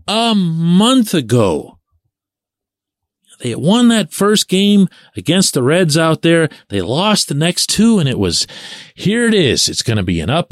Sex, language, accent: male, English, American